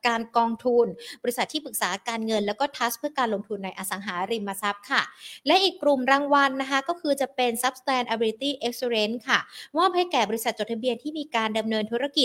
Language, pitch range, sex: Thai, 205-260 Hz, female